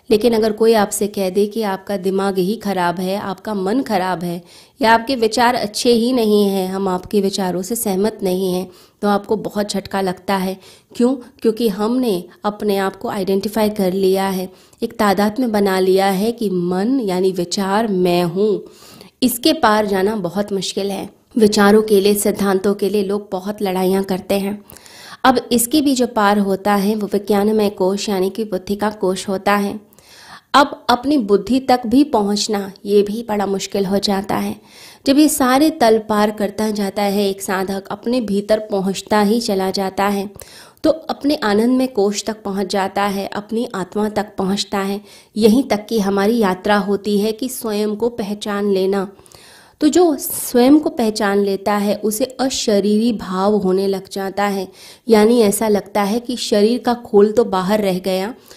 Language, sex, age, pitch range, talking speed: Hindi, female, 20-39, 195-225 Hz, 175 wpm